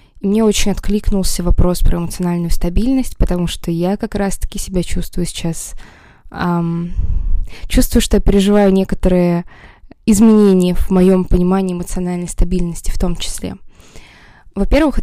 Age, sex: 20-39, female